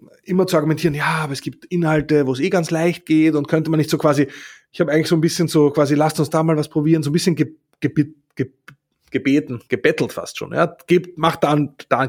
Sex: male